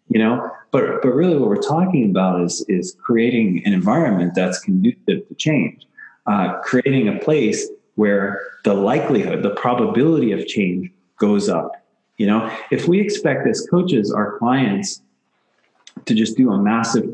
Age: 30-49